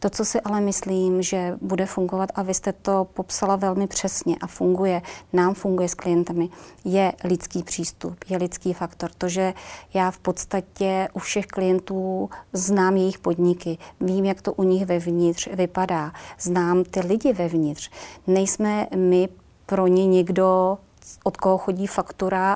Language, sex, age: Czech, female, 30-49